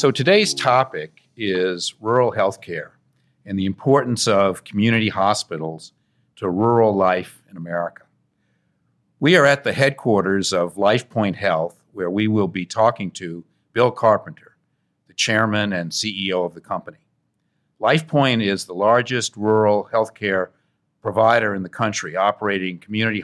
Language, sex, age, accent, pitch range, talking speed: English, male, 50-69, American, 100-130 Hz, 140 wpm